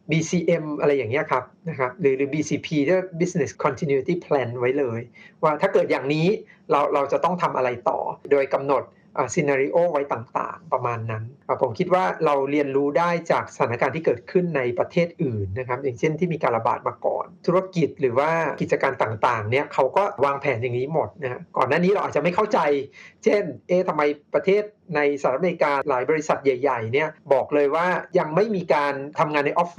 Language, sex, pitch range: Thai, male, 130-175 Hz